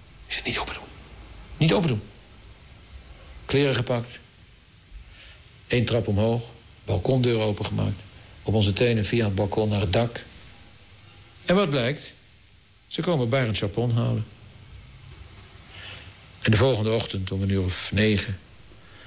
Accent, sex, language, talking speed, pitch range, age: Dutch, male, Dutch, 125 wpm, 95-115 Hz, 60-79